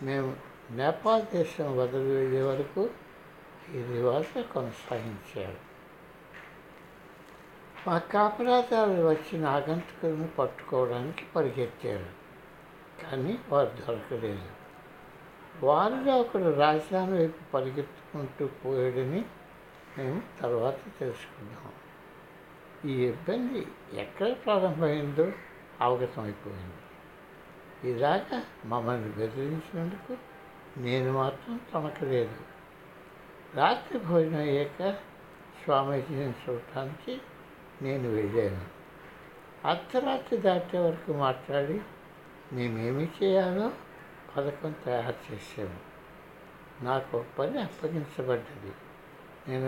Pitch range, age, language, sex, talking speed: 130-180 Hz, 60-79, Telugu, male, 70 wpm